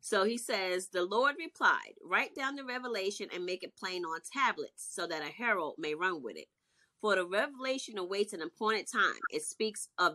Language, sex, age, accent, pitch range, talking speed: English, female, 30-49, American, 185-260 Hz, 200 wpm